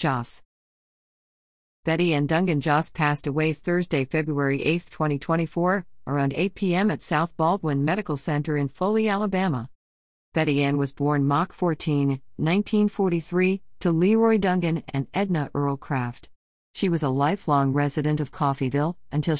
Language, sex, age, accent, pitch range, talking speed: English, female, 50-69, American, 145-195 Hz, 135 wpm